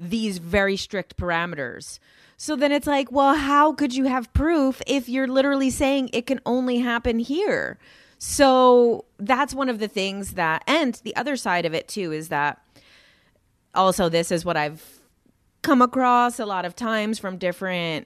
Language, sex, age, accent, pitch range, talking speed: English, female, 30-49, American, 175-245 Hz, 175 wpm